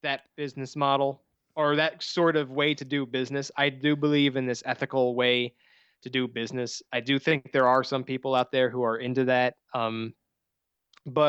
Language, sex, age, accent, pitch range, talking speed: English, male, 20-39, American, 130-170 Hz, 190 wpm